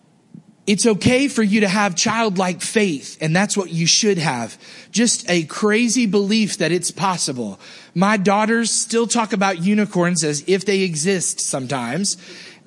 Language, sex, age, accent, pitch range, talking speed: English, male, 30-49, American, 180-225 Hz, 150 wpm